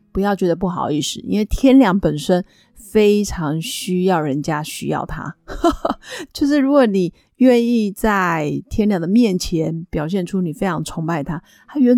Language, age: Chinese, 30-49